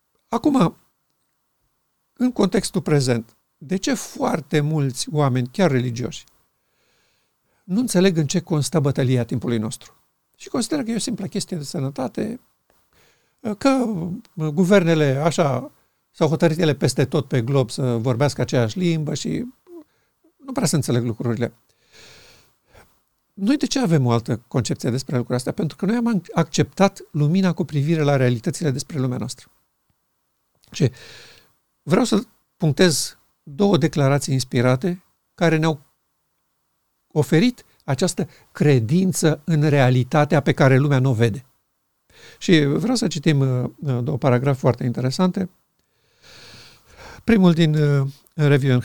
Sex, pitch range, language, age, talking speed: male, 135-185 Hz, Romanian, 50-69, 125 wpm